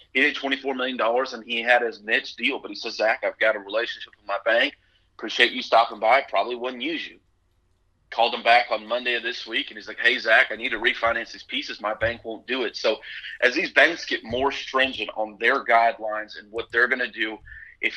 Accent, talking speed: American, 235 wpm